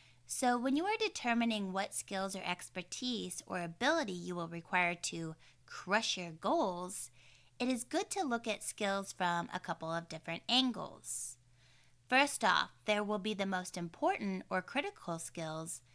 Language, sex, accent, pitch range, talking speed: English, female, American, 170-235 Hz, 160 wpm